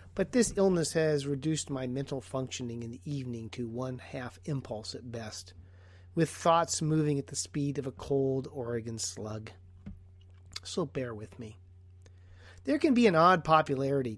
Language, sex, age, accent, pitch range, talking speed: English, male, 40-59, American, 110-160 Hz, 160 wpm